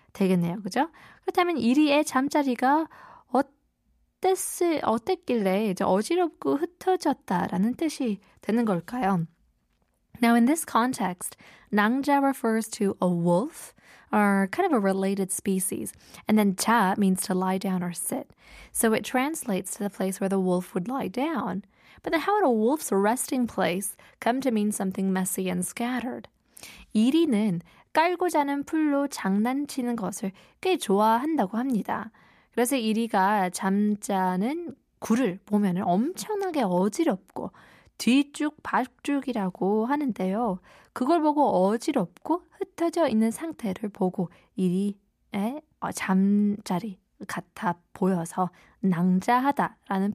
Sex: female